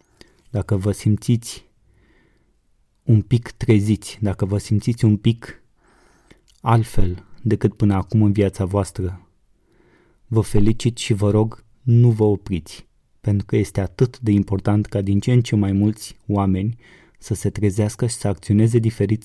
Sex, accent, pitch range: male, native, 100-115 Hz